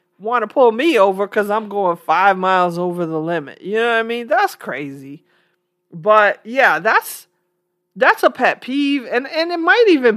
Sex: male